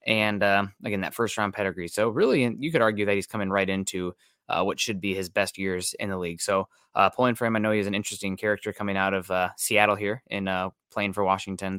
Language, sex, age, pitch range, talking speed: English, male, 20-39, 95-120 Hz, 245 wpm